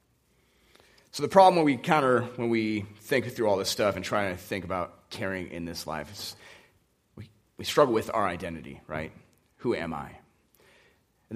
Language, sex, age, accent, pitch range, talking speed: English, male, 30-49, American, 95-125 Hz, 180 wpm